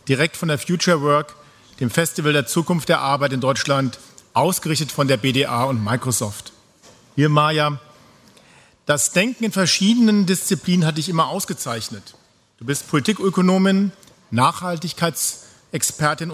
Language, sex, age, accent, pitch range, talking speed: German, male, 50-69, German, 135-180 Hz, 125 wpm